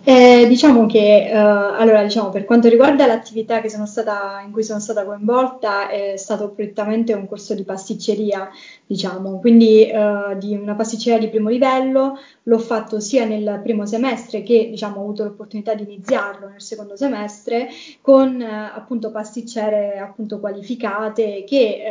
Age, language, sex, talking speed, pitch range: 20-39, Italian, female, 155 wpm, 205-235 Hz